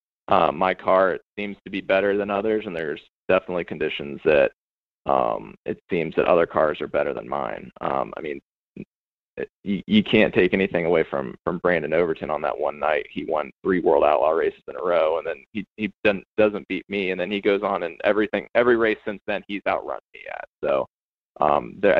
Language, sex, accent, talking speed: English, male, American, 210 wpm